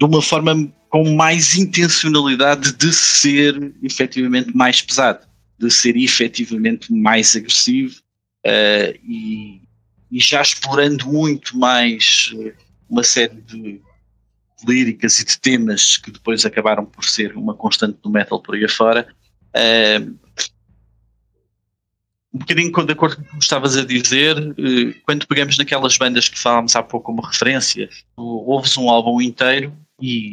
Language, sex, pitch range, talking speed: Portuguese, male, 110-175 Hz, 140 wpm